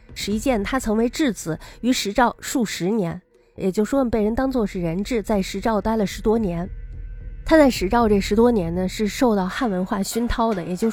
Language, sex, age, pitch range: Chinese, female, 20-39, 185-235 Hz